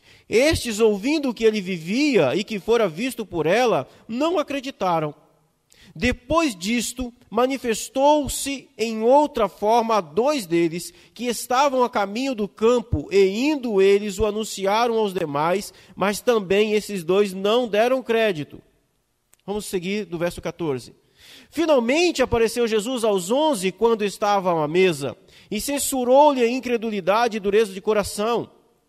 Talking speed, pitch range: 135 wpm, 195-250 Hz